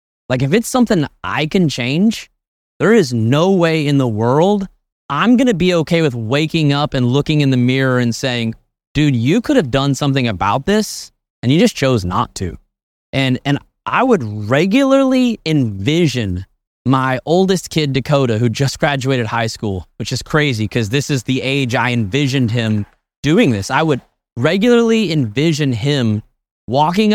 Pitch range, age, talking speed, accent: 120-160 Hz, 20-39, 170 wpm, American